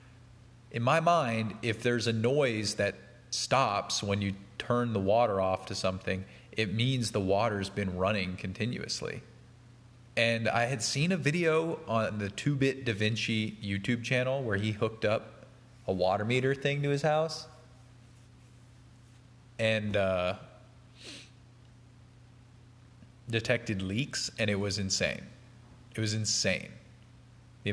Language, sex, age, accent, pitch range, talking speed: English, male, 30-49, American, 105-125 Hz, 130 wpm